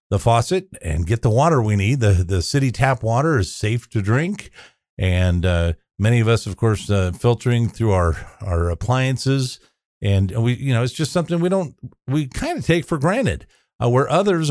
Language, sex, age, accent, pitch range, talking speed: English, male, 50-69, American, 100-140 Hz, 200 wpm